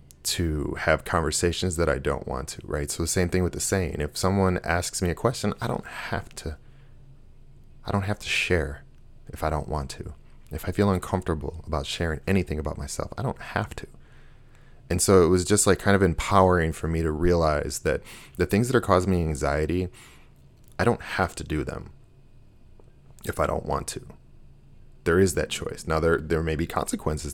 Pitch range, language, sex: 75-90 Hz, English, male